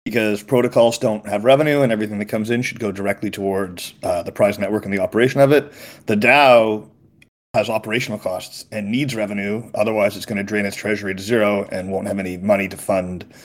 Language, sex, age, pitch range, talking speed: English, male, 30-49, 105-130 Hz, 210 wpm